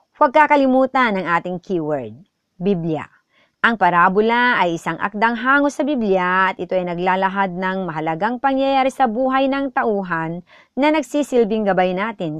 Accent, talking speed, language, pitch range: native, 140 wpm, Filipino, 165-235 Hz